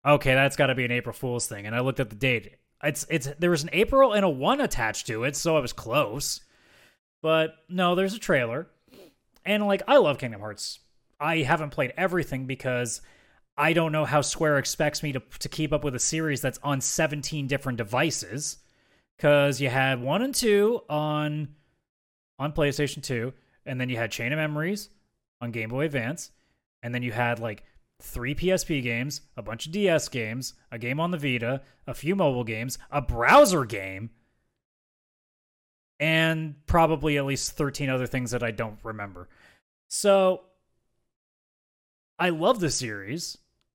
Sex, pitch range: male, 125-160 Hz